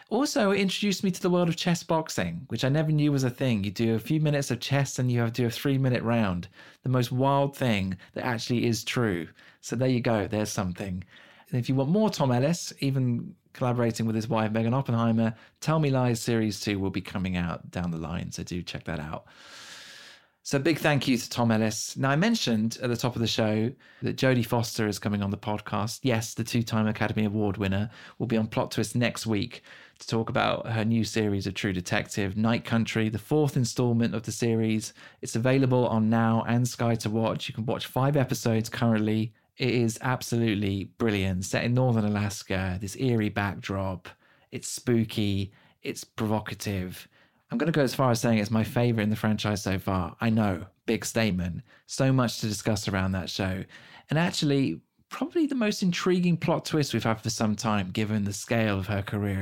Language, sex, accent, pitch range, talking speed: English, male, British, 105-125 Hz, 210 wpm